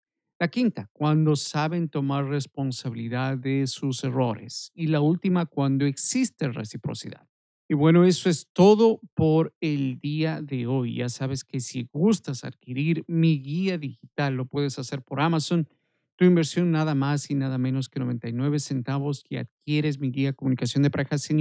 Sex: male